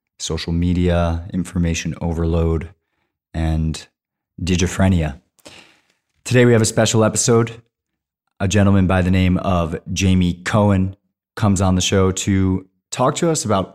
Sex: male